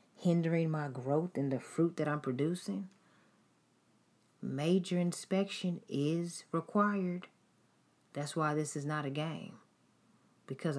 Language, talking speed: English, 115 wpm